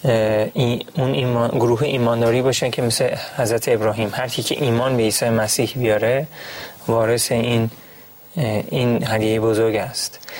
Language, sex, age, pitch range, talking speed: Persian, male, 30-49, 115-135 Hz, 140 wpm